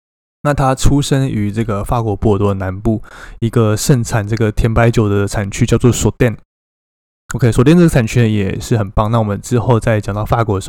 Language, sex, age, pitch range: Chinese, male, 20-39, 105-125 Hz